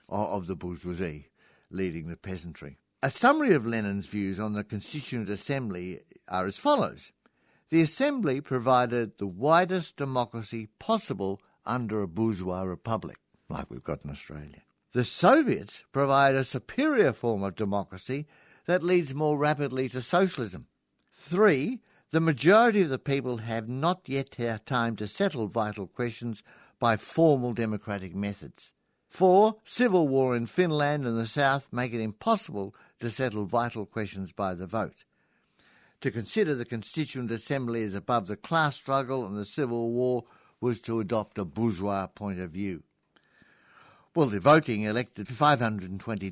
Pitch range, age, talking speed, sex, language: 105-150 Hz, 60-79, 145 wpm, male, English